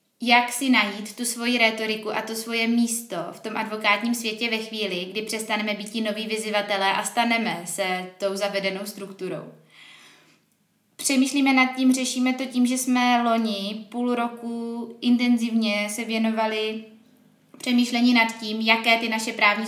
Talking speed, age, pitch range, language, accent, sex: 150 wpm, 20-39, 215-245 Hz, Czech, native, female